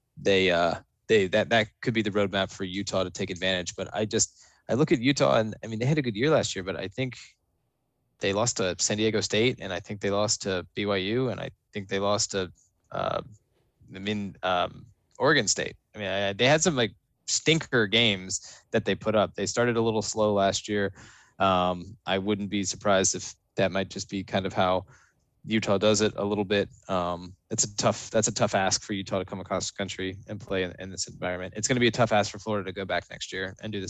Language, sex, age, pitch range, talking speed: English, male, 20-39, 95-115 Hz, 240 wpm